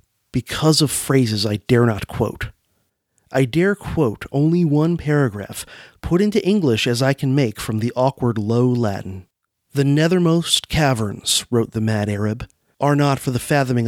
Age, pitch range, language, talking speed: 40-59, 105-140 Hz, English, 160 wpm